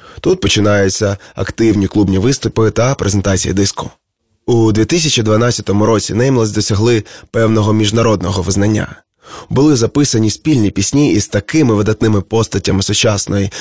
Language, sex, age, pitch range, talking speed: Ukrainian, male, 20-39, 100-115 Hz, 110 wpm